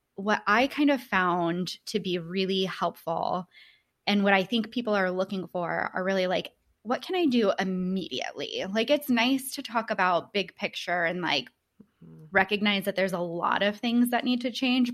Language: English